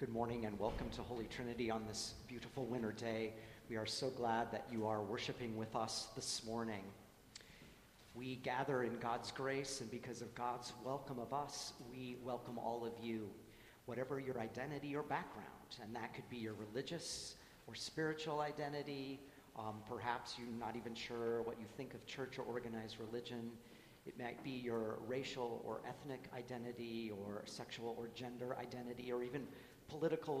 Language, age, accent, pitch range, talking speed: English, 40-59, American, 115-135 Hz, 170 wpm